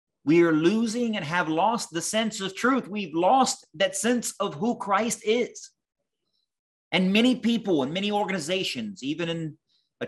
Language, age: English, 30-49